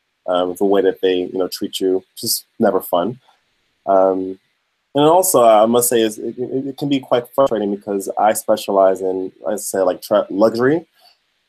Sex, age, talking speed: male, 20-39, 190 wpm